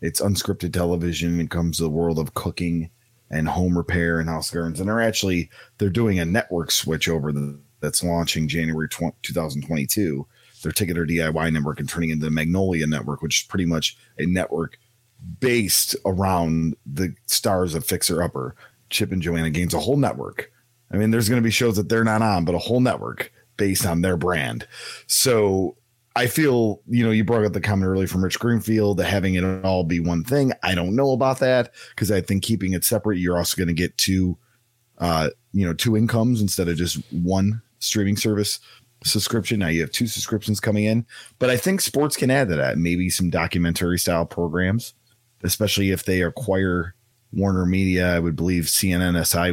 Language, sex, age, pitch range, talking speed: English, male, 30-49, 85-110 Hz, 195 wpm